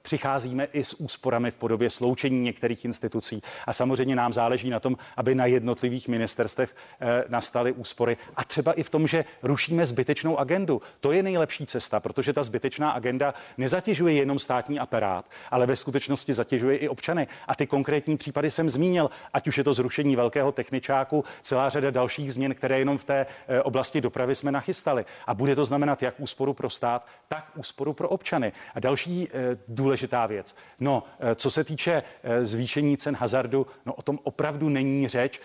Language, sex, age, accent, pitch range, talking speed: Czech, male, 40-59, native, 125-145 Hz, 175 wpm